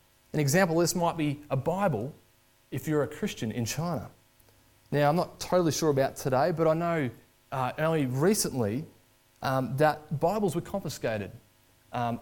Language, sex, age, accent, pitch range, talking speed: English, male, 20-39, Australian, 115-150 Hz, 160 wpm